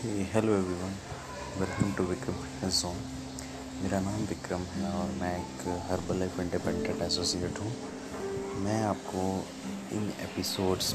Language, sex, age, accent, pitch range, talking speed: Hindi, male, 30-49, native, 75-100 Hz, 125 wpm